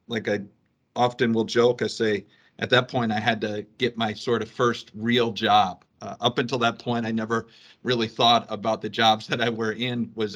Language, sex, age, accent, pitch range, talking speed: English, male, 50-69, American, 110-125 Hz, 215 wpm